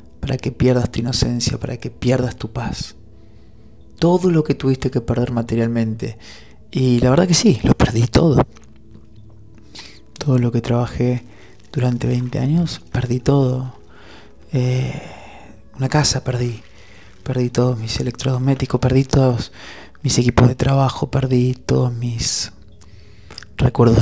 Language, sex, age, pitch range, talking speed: Spanish, male, 20-39, 110-130 Hz, 130 wpm